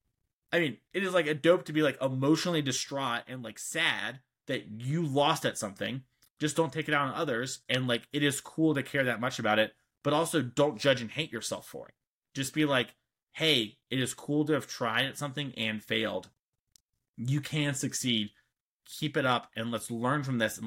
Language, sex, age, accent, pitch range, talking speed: English, male, 30-49, American, 115-145 Hz, 210 wpm